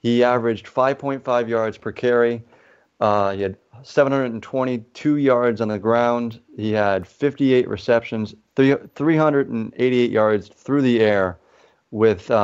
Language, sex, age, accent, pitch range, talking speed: English, male, 30-49, American, 100-120 Hz, 125 wpm